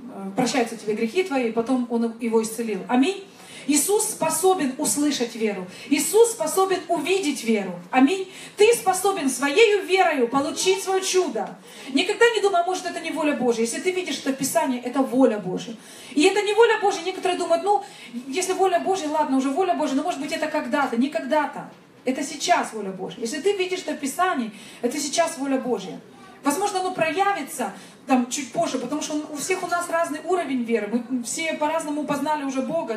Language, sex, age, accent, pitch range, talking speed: Russian, female, 30-49, native, 250-345 Hz, 180 wpm